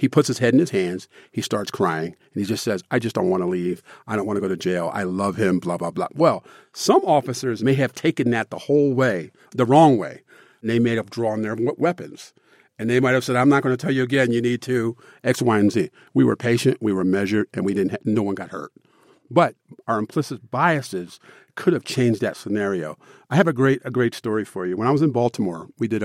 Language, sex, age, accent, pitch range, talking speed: English, male, 50-69, American, 105-135 Hz, 255 wpm